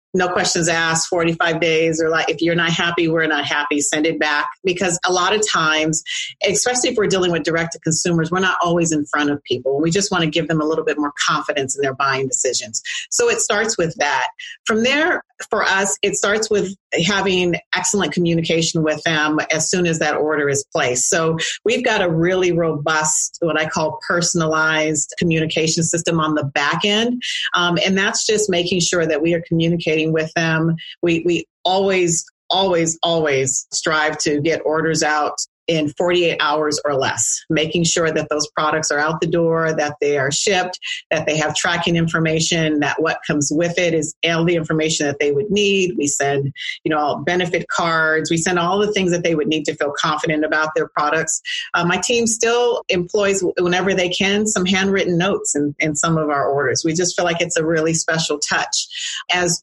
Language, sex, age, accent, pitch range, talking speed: English, female, 40-59, American, 155-180 Hz, 195 wpm